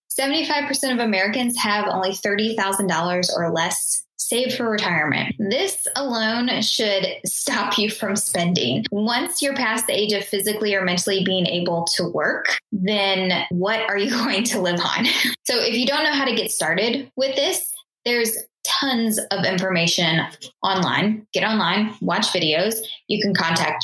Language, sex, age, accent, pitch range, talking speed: English, female, 10-29, American, 175-225 Hz, 155 wpm